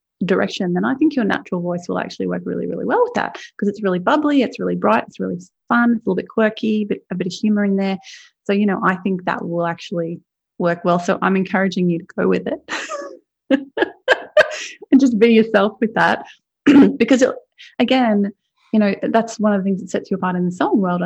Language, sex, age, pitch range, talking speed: English, female, 30-49, 180-230 Hz, 220 wpm